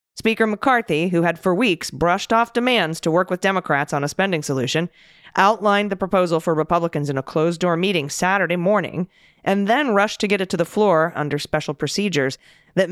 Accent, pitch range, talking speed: American, 155-195 Hz, 195 wpm